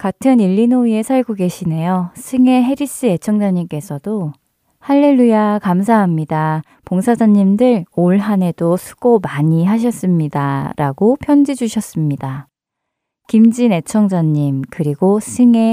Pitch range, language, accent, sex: 155-220 Hz, Korean, native, female